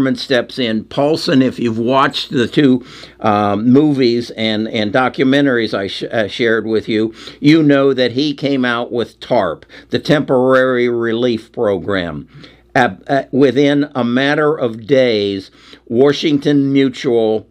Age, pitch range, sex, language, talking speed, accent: 60-79, 115-140 Hz, male, English, 125 wpm, American